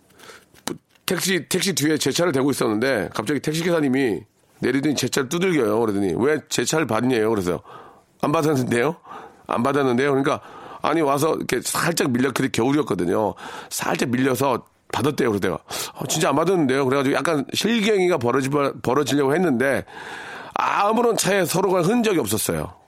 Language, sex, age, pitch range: Korean, male, 40-59, 120-160 Hz